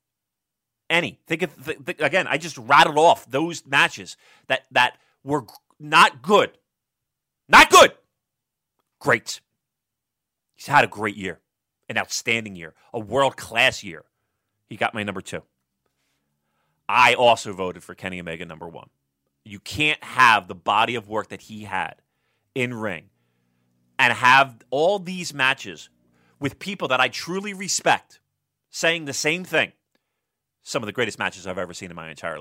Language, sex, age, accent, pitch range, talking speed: English, male, 30-49, American, 100-140 Hz, 155 wpm